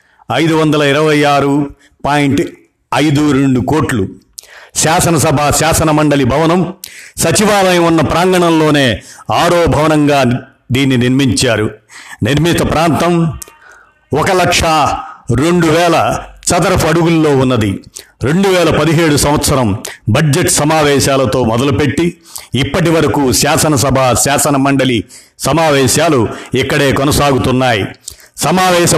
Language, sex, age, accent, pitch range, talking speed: Telugu, male, 50-69, native, 135-165 Hz, 80 wpm